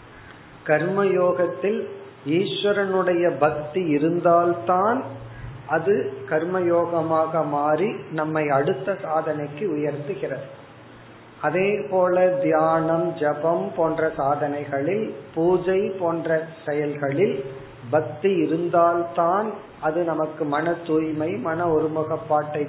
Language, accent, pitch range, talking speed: Tamil, native, 140-175 Hz, 70 wpm